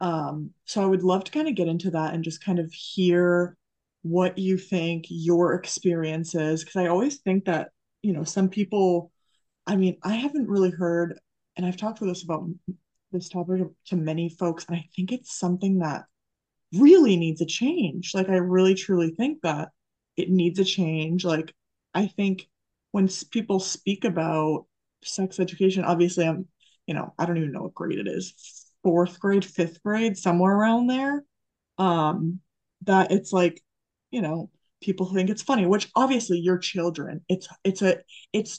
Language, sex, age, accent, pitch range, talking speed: English, female, 20-39, American, 175-200 Hz, 175 wpm